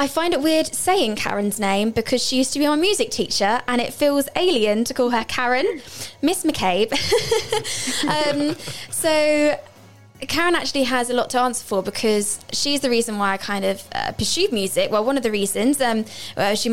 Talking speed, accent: 190 wpm, British